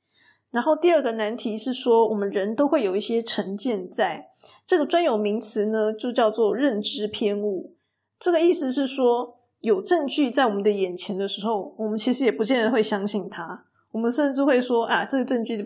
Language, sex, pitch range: Chinese, female, 215-275 Hz